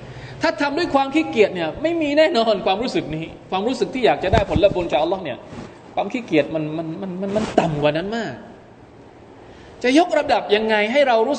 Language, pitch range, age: Thai, 135-225 Hz, 20-39